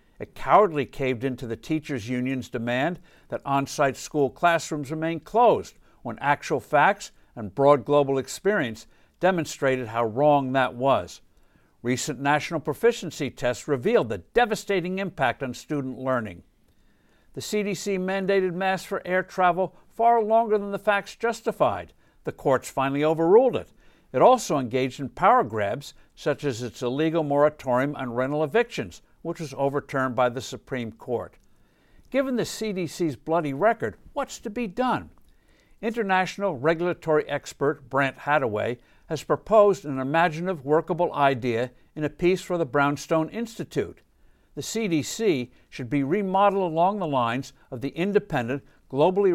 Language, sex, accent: English, male, American